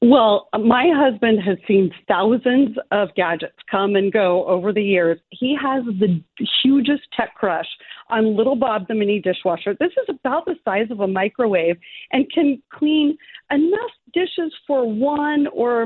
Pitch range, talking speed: 200-275 Hz, 160 wpm